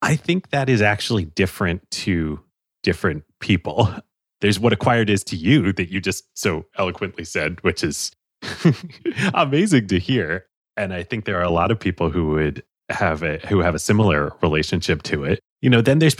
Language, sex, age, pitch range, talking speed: English, male, 30-49, 85-110 Hz, 185 wpm